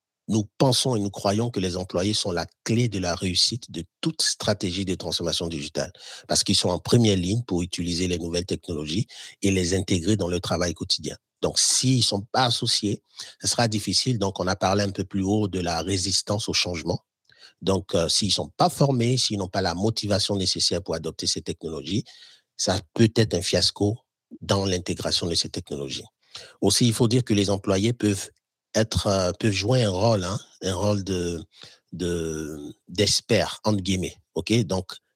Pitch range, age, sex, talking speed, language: 90-110 Hz, 50-69, male, 190 wpm, French